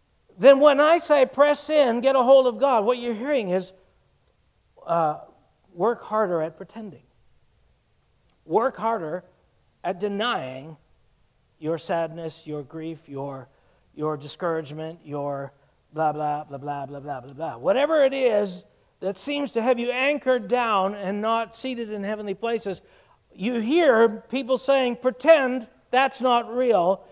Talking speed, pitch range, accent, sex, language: 140 wpm, 190-260 Hz, American, male, English